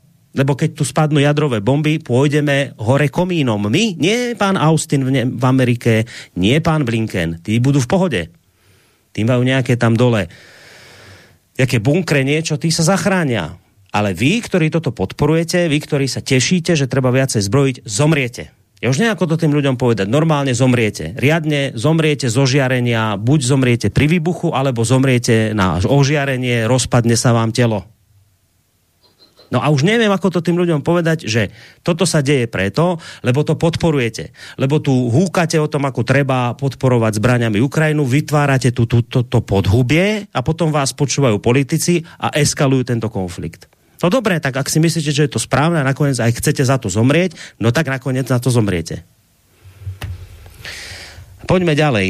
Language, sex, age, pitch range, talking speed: Slovak, male, 30-49, 115-155 Hz, 160 wpm